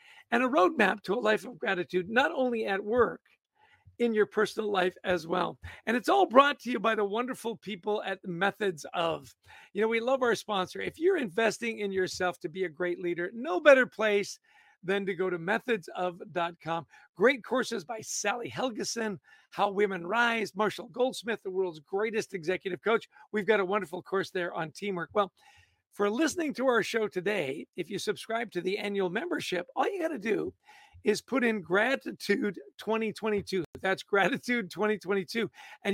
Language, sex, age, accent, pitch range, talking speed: English, male, 50-69, American, 185-235 Hz, 185 wpm